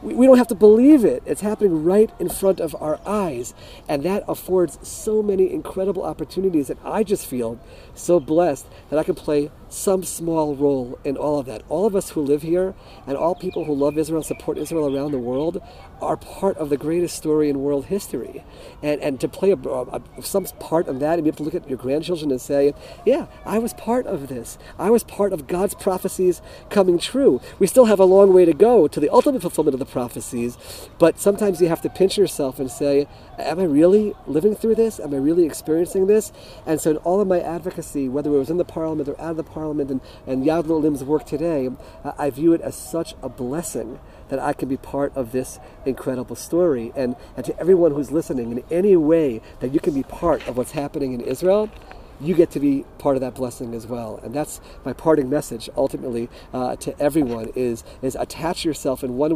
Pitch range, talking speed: 135-185 Hz, 220 wpm